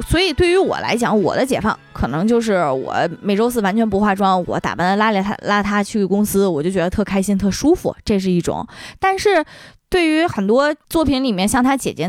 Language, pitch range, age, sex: Chinese, 190-260 Hz, 20-39, female